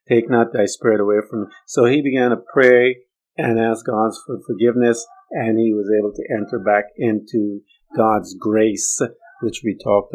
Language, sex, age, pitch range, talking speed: English, male, 50-69, 105-125 Hz, 175 wpm